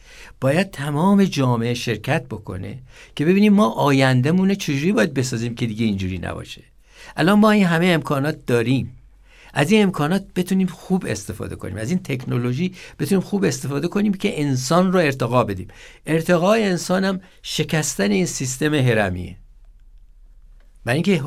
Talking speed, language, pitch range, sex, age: 140 wpm, Persian, 120-170 Hz, male, 60-79